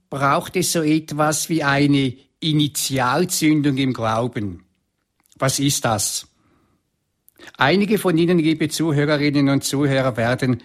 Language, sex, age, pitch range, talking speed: German, male, 60-79, 135-165 Hz, 115 wpm